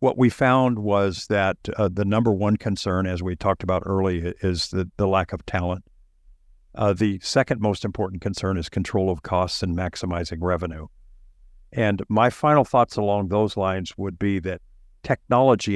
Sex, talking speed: male, 170 wpm